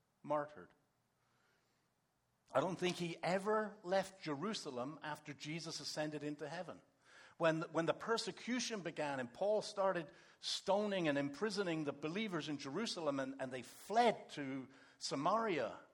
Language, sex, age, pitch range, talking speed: English, male, 60-79, 145-200 Hz, 130 wpm